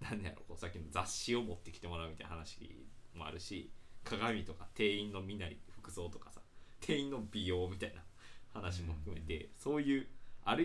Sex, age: male, 20-39